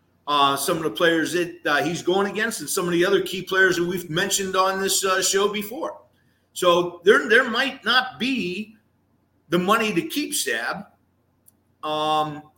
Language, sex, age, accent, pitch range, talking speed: English, male, 50-69, American, 150-215 Hz, 175 wpm